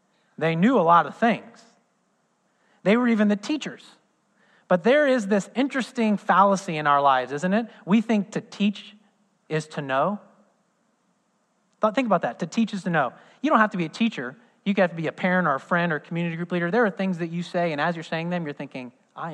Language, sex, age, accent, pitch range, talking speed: English, male, 30-49, American, 165-220 Hz, 225 wpm